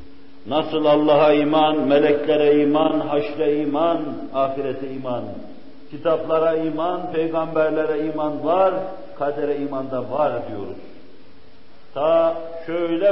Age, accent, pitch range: 60-79, native, 155-175 Hz